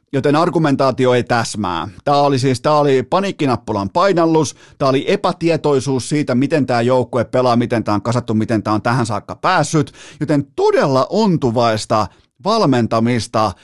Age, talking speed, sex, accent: 30-49, 145 wpm, male, native